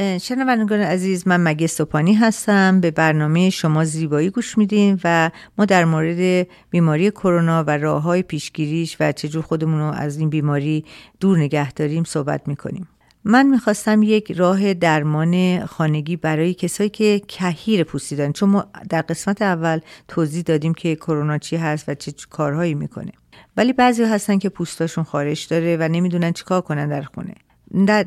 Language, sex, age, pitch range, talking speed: Persian, female, 50-69, 155-195 Hz, 165 wpm